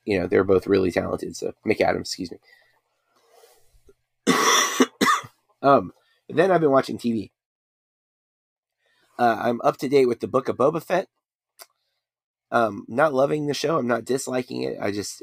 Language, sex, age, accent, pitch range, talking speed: English, male, 30-49, American, 100-120 Hz, 155 wpm